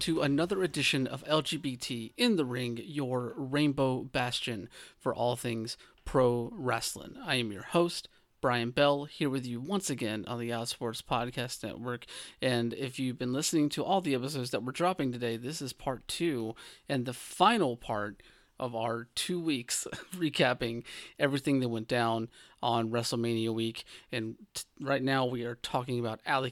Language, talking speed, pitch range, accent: English, 165 wpm, 115-140 Hz, American